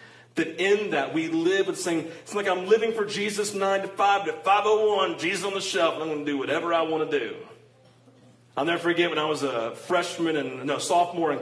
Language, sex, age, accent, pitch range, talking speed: English, male, 40-59, American, 145-190 Hz, 230 wpm